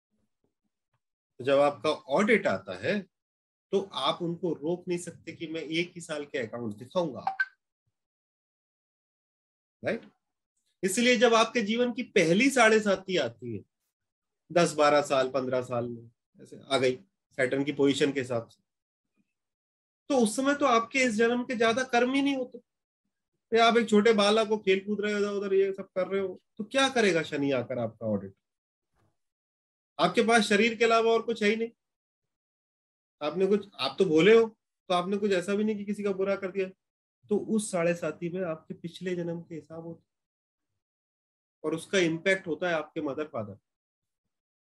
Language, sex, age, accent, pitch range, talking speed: Hindi, male, 30-49, native, 145-210 Hz, 160 wpm